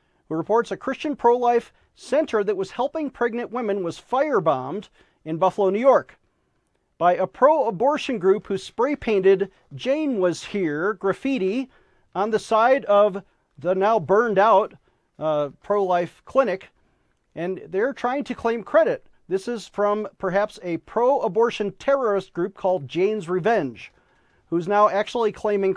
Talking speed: 135 wpm